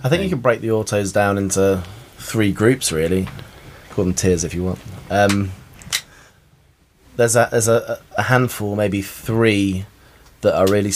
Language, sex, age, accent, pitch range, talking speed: English, male, 30-49, British, 95-110 Hz, 165 wpm